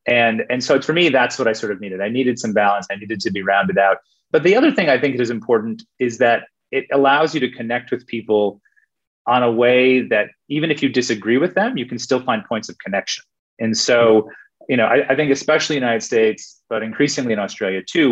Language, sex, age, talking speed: English, male, 30-49, 240 wpm